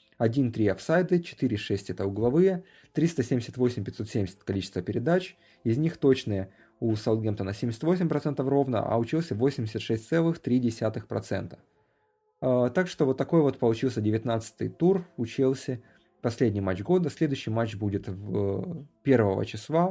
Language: Russian